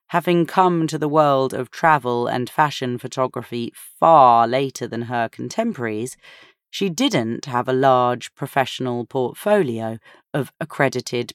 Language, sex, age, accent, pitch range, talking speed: English, female, 30-49, British, 125-180 Hz, 125 wpm